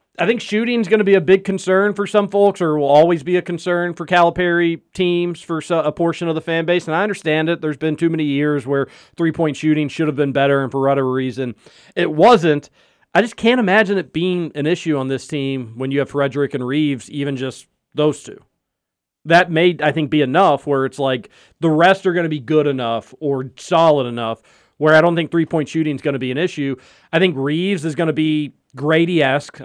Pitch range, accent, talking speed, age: 135-170 Hz, American, 225 wpm, 40-59